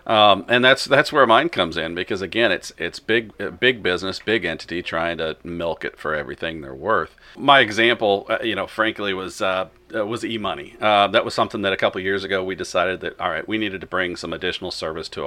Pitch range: 95-125 Hz